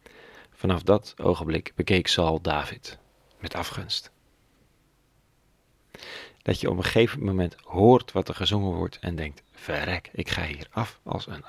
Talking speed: 145 wpm